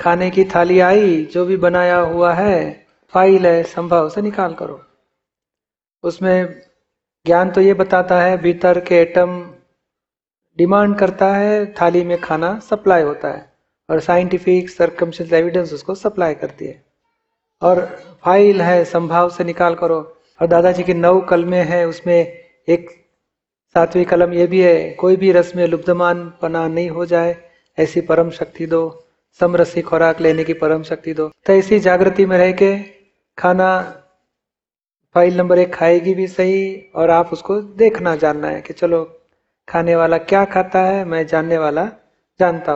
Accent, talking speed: native, 150 wpm